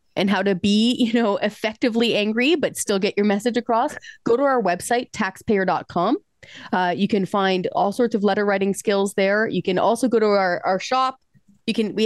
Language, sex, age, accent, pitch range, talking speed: English, female, 30-49, American, 180-230 Hz, 205 wpm